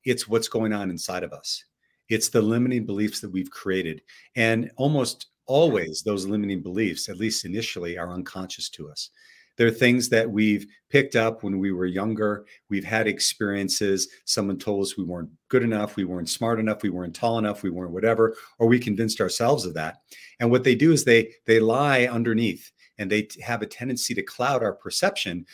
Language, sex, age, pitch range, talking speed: English, male, 50-69, 95-125 Hz, 195 wpm